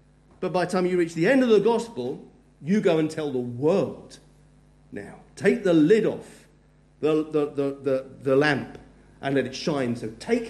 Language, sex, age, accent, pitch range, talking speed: English, male, 50-69, British, 120-185 Hz, 195 wpm